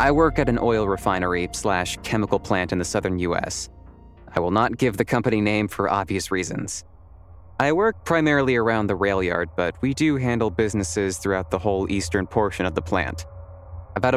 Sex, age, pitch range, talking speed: male, 30-49, 90-120 Hz, 180 wpm